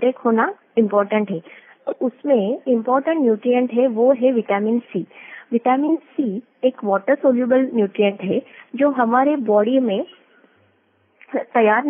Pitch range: 225-275 Hz